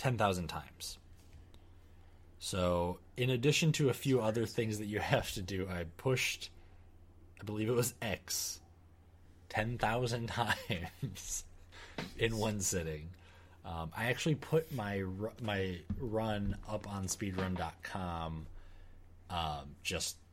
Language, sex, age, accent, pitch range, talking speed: English, male, 20-39, American, 85-105 Hz, 120 wpm